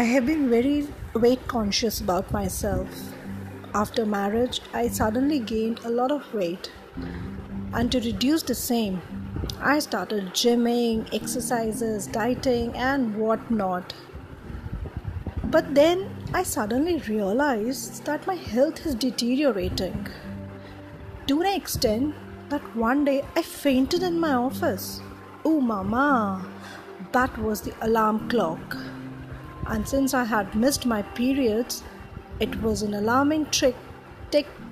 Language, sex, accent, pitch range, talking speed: Hindi, female, native, 210-270 Hz, 125 wpm